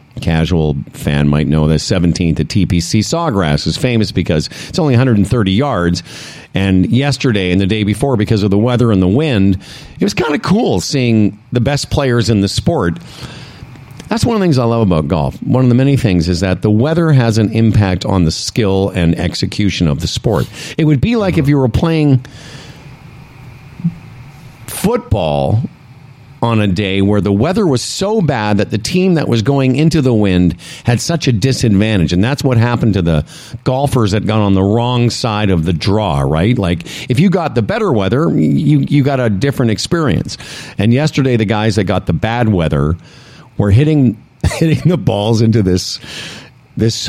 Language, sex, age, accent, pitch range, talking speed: English, male, 50-69, American, 95-135 Hz, 190 wpm